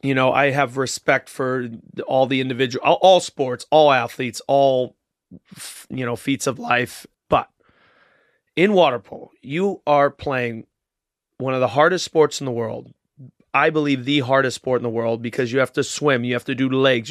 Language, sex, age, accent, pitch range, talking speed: English, male, 30-49, American, 125-150 Hz, 185 wpm